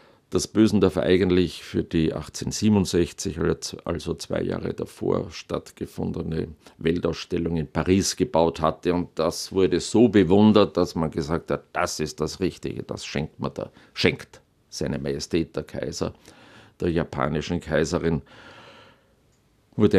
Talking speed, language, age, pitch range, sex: 125 wpm, German, 50-69, 85-100 Hz, male